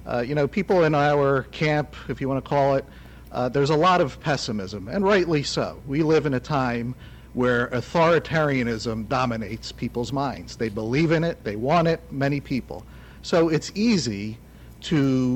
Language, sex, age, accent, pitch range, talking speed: English, male, 50-69, American, 125-180 Hz, 170 wpm